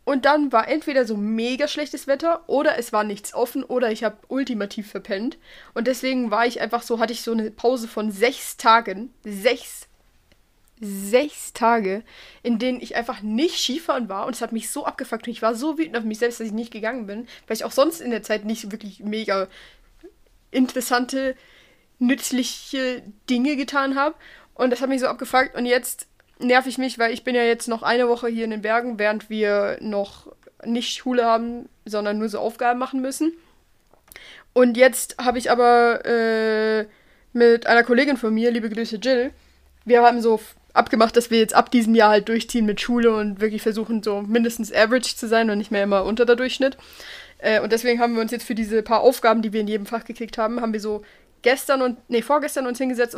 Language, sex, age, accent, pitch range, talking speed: German, female, 20-39, German, 220-255 Hz, 205 wpm